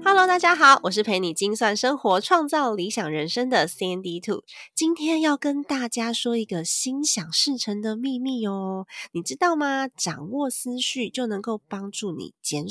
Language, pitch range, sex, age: Chinese, 170-245 Hz, female, 20-39